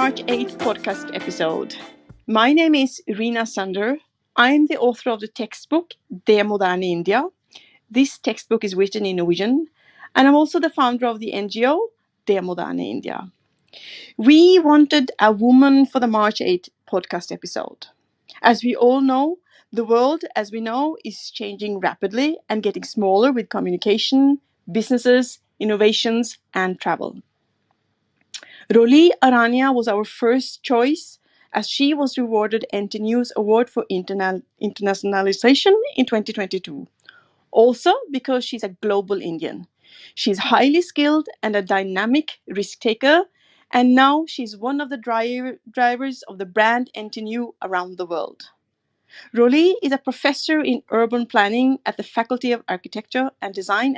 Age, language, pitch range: 30-49, English, 210-270 Hz